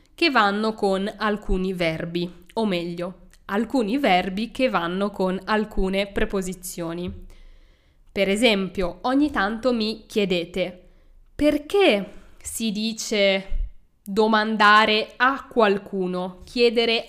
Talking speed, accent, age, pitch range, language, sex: 95 wpm, native, 20-39, 195-250 Hz, Italian, female